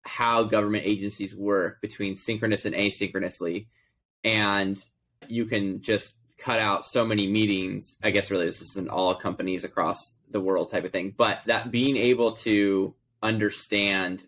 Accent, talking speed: American, 150 wpm